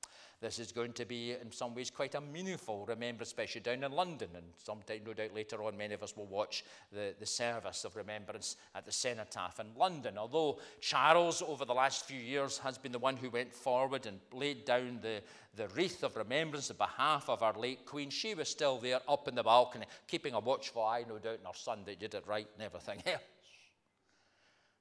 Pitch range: 105-130 Hz